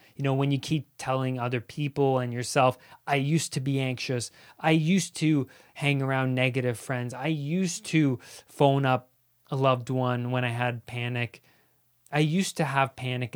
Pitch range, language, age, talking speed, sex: 125-160 Hz, English, 20-39, 175 wpm, male